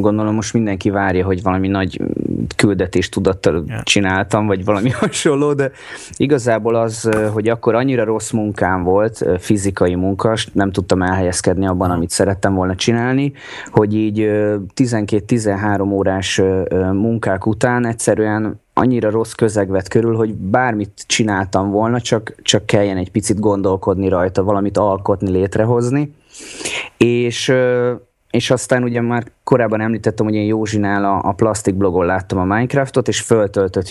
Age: 20-39